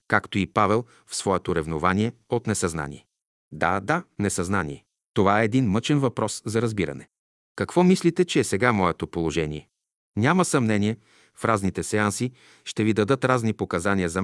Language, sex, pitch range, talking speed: Bulgarian, male, 95-125 Hz, 150 wpm